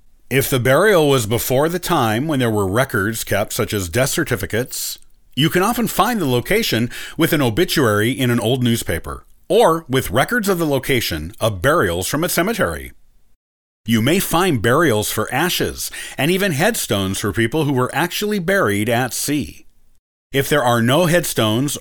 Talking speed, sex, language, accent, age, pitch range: 170 wpm, male, English, American, 40-59, 105-150 Hz